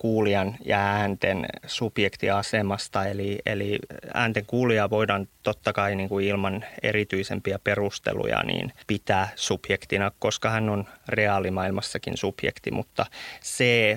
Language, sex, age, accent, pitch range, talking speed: Finnish, male, 20-39, native, 100-110 Hz, 100 wpm